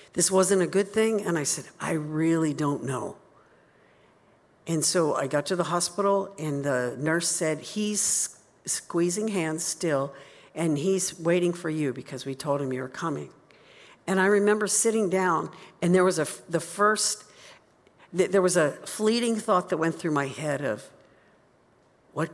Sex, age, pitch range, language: female, 60-79, 145-185 Hz, English